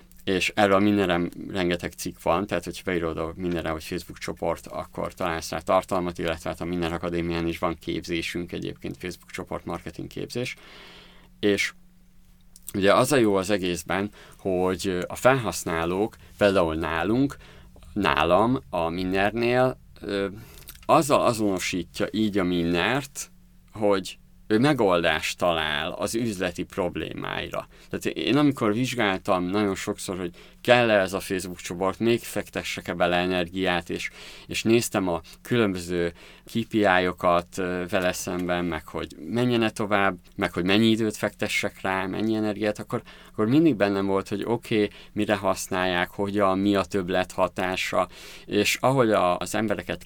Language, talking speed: Hungarian, 135 wpm